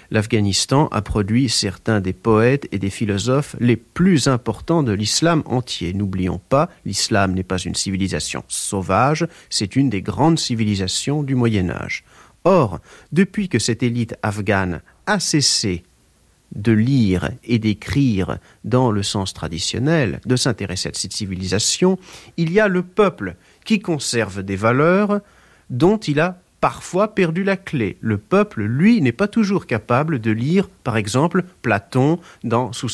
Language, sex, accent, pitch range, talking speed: French, male, French, 100-160 Hz, 150 wpm